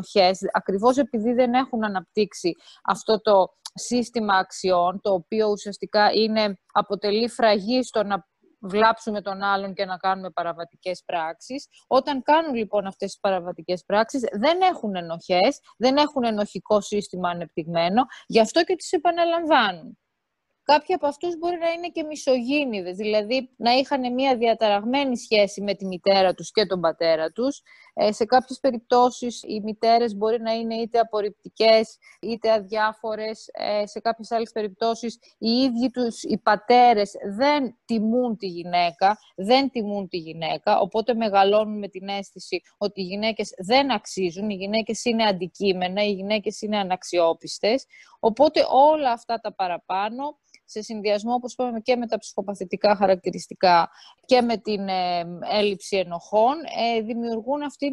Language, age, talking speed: Greek, 20-39, 140 wpm